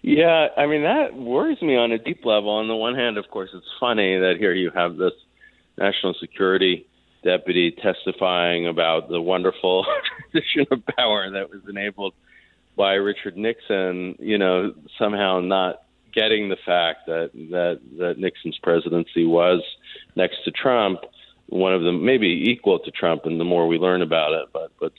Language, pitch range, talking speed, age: English, 85-115 Hz, 170 wpm, 40-59